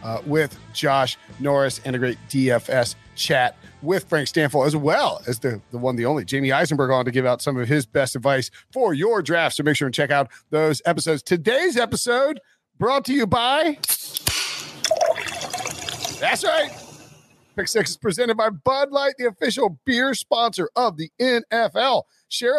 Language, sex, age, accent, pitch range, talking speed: English, male, 40-59, American, 140-235 Hz, 175 wpm